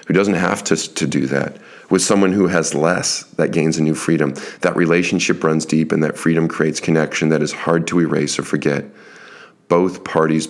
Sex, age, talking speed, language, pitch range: male, 40-59, 200 wpm, English, 75-85 Hz